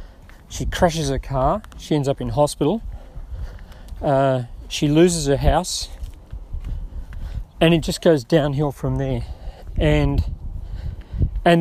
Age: 40-59